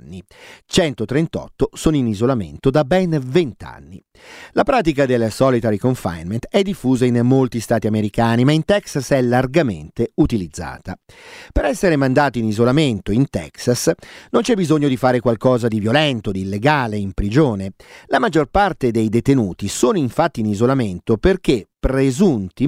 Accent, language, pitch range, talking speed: native, Italian, 110-160 Hz, 145 wpm